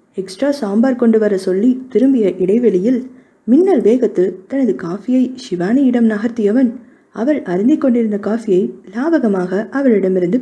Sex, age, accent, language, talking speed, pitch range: female, 20-39, native, Tamil, 110 wpm, 200-260 Hz